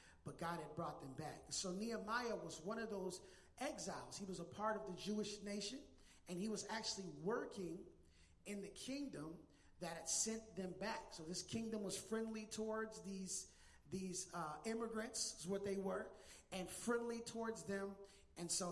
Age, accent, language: 30-49, American, English